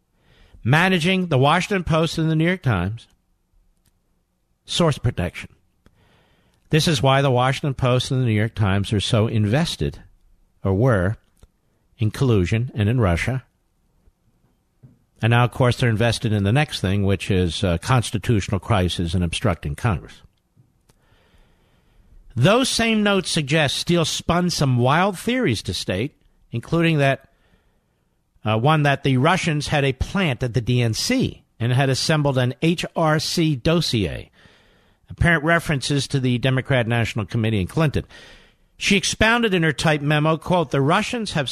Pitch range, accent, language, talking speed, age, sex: 105-155 Hz, American, English, 145 wpm, 50-69, male